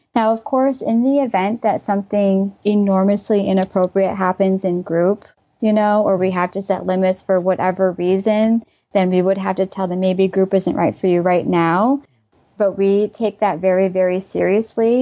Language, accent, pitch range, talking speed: English, American, 185-220 Hz, 185 wpm